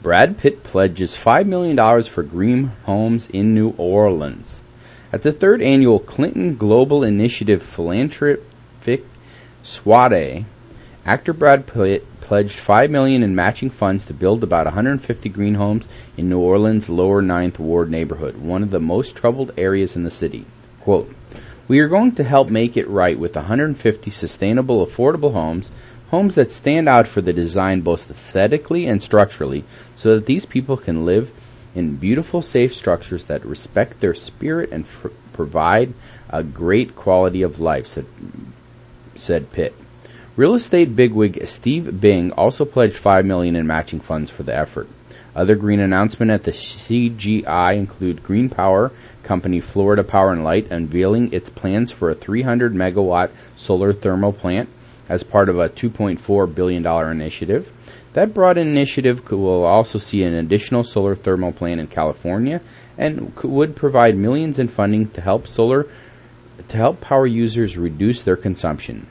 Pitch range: 90-120 Hz